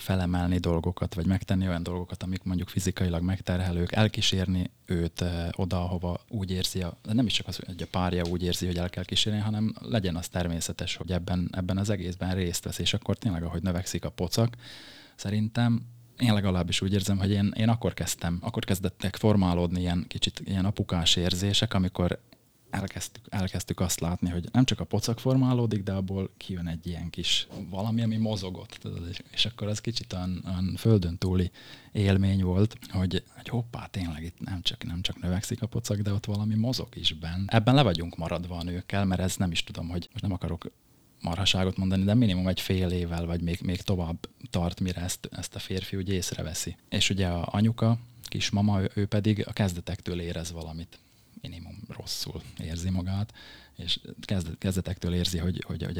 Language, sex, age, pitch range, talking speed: Hungarian, male, 20-39, 90-105 Hz, 180 wpm